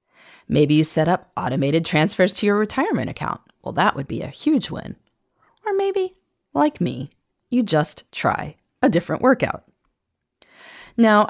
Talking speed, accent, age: 150 wpm, American, 30-49